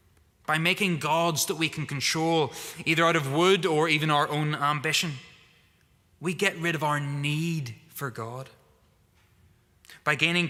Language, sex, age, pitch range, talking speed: English, male, 20-39, 120-170 Hz, 150 wpm